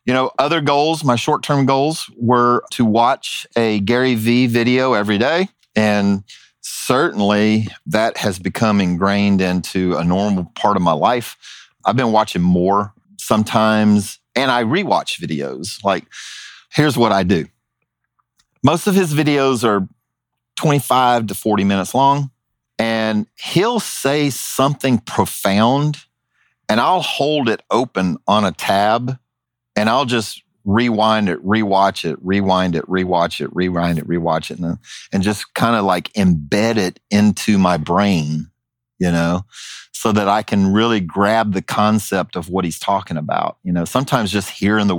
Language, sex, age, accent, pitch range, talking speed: English, male, 40-59, American, 95-120 Hz, 150 wpm